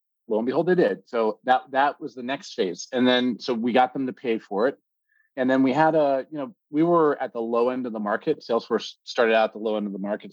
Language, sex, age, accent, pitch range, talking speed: English, male, 40-59, American, 105-140 Hz, 280 wpm